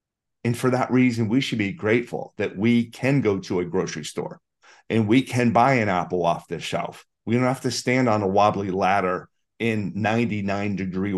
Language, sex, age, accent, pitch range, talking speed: English, male, 40-59, American, 105-125 Hz, 200 wpm